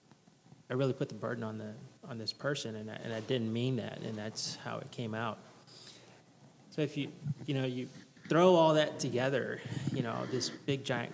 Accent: American